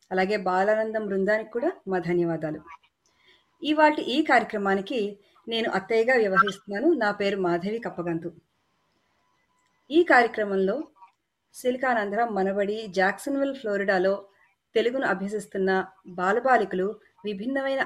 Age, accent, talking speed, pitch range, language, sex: 30-49, native, 85 wpm, 190-230 Hz, Telugu, female